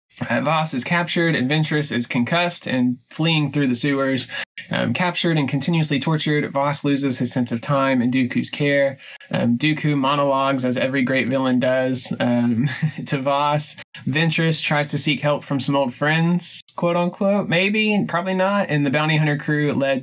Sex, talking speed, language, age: male, 175 wpm, English, 20-39